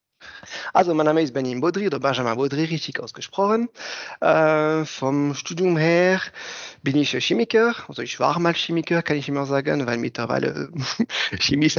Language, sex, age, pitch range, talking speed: German, male, 30-49, 135-170 Hz, 160 wpm